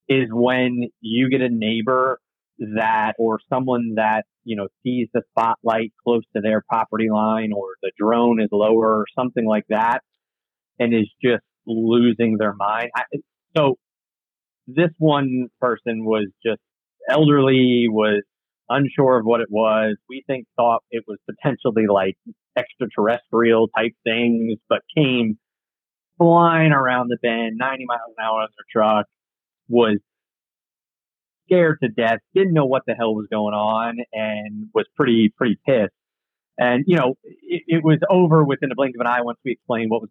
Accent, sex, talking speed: American, male, 160 wpm